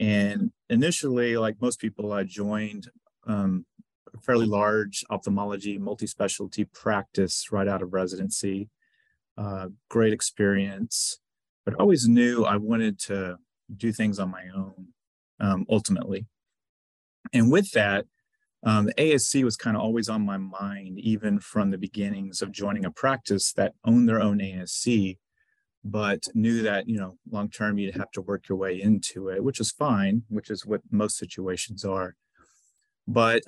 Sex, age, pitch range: male, 30-49, 95-115 Hz